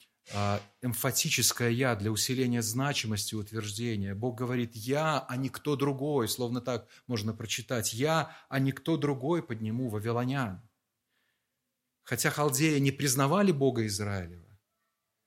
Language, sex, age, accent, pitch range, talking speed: Russian, male, 30-49, native, 115-145 Hz, 115 wpm